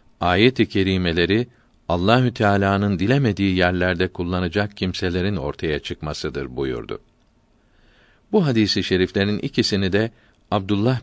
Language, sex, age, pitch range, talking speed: Turkish, male, 50-69, 90-110 Hz, 100 wpm